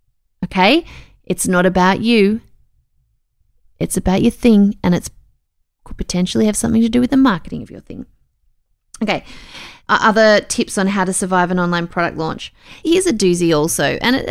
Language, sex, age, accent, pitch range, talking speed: English, female, 30-49, Australian, 175-235 Hz, 170 wpm